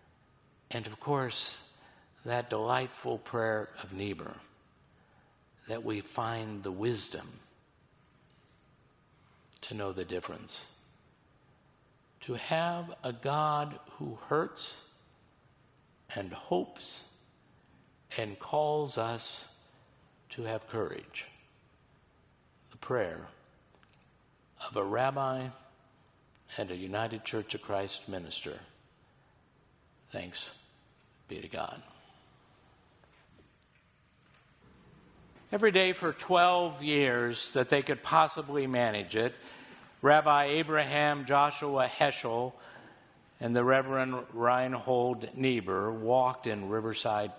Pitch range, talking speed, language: 110-145 Hz, 90 wpm, English